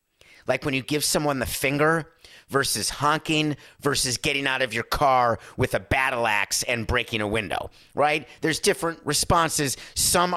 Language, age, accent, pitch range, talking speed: English, 50-69, American, 105-150 Hz, 160 wpm